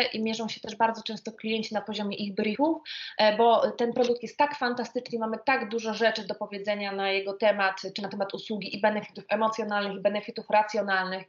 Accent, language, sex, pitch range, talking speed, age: native, Polish, female, 210-250 Hz, 190 wpm, 20-39